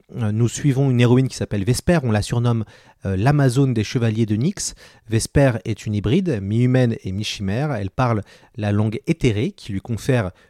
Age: 30-49